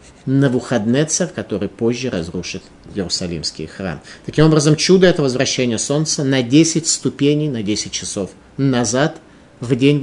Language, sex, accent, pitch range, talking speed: Russian, male, native, 115-155 Hz, 140 wpm